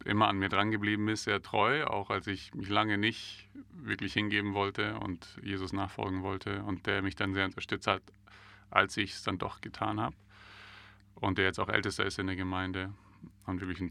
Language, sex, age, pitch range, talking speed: German, male, 30-49, 95-100 Hz, 205 wpm